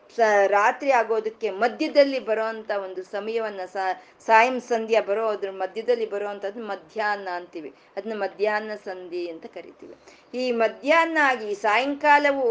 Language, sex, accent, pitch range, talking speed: Kannada, female, native, 200-270 Hz, 105 wpm